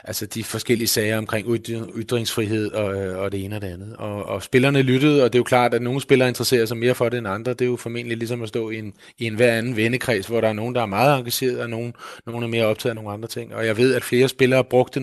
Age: 30-49